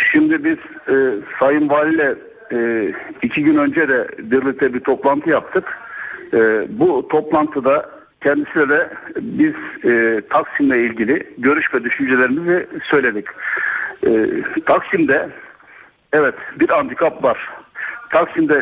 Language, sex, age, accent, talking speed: Turkish, male, 60-79, native, 110 wpm